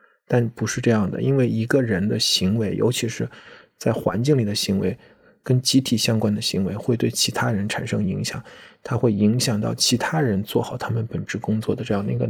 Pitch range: 110-130 Hz